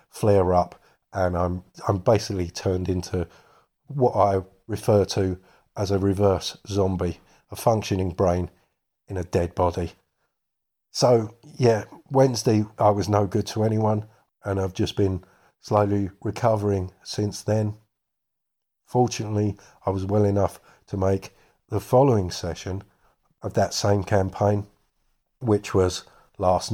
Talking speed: 125 wpm